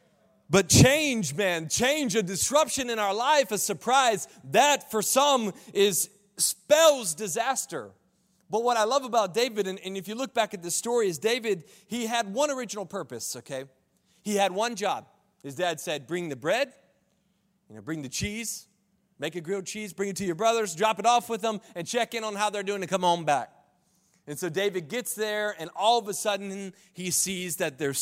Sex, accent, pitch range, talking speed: male, American, 155-205 Hz, 195 wpm